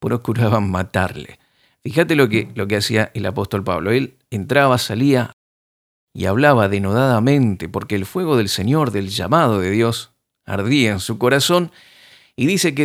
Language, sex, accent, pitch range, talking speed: Spanish, male, Argentinian, 100-140 Hz, 150 wpm